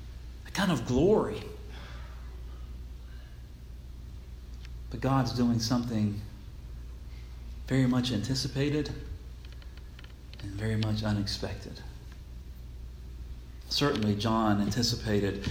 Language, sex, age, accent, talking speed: English, male, 40-59, American, 65 wpm